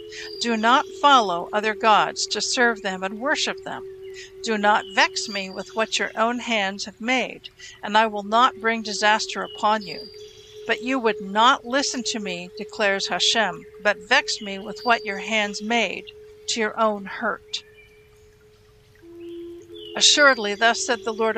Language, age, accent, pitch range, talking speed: English, 60-79, American, 205-265 Hz, 155 wpm